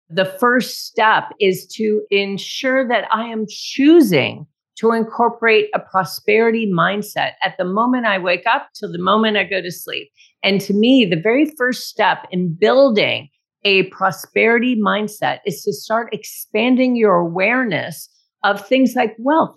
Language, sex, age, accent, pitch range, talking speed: English, female, 40-59, American, 200-250 Hz, 155 wpm